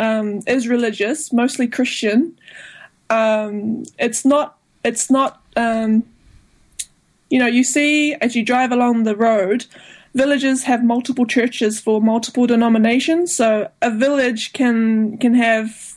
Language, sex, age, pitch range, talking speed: English, female, 20-39, 230-255 Hz, 130 wpm